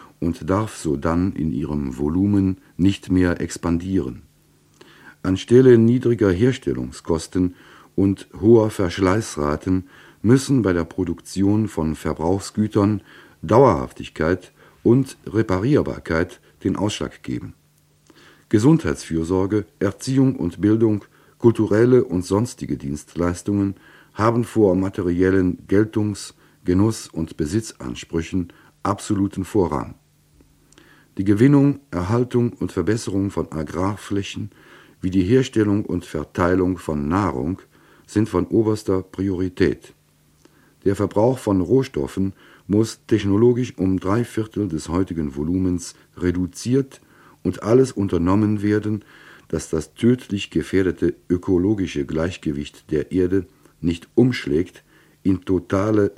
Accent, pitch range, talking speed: German, 90-110 Hz, 95 wpm